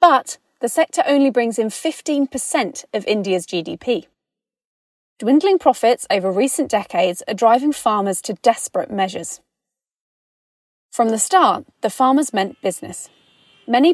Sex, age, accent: female, 30-49, British